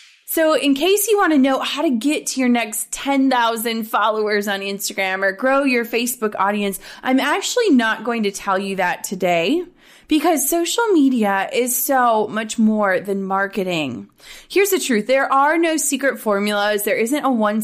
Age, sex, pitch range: 20-39, female, 195-275 Hz